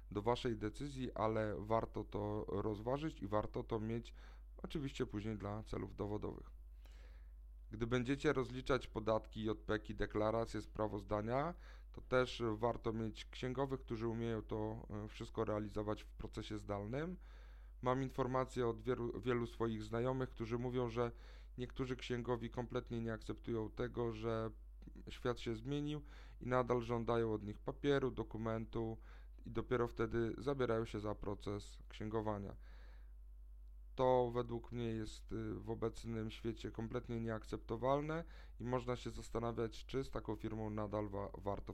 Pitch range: 105-120 Hz